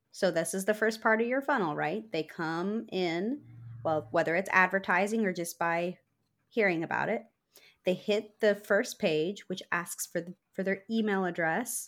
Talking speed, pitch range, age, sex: 180 wpm, 170-215 Hz, 30-49, female